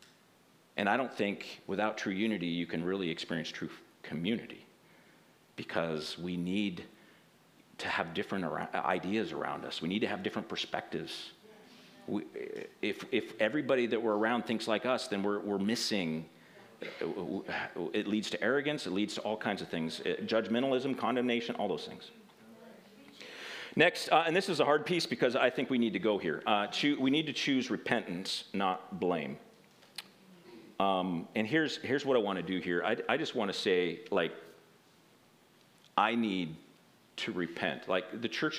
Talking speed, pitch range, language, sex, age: 170 wpm, 90-130 Hz, English, male, 40-59